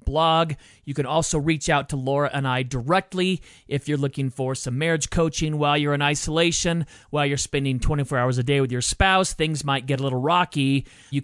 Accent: American